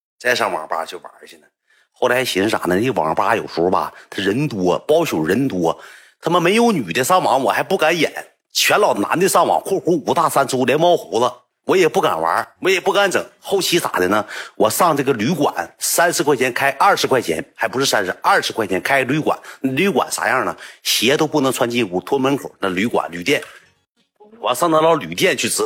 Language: Chinese